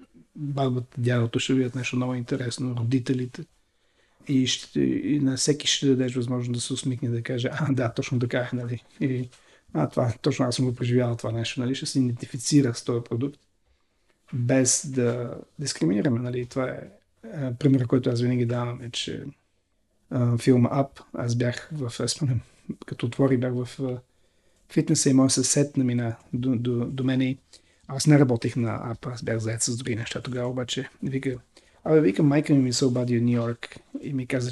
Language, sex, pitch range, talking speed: Bulgarian, male, 120-135 Hz, 185 wpm